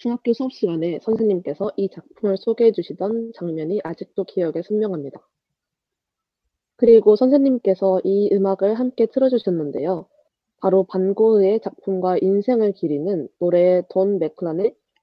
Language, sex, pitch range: Korean, female, 175-220 Hz